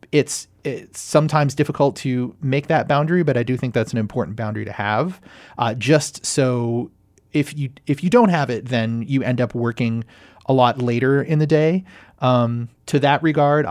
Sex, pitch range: male, 120-150 Hz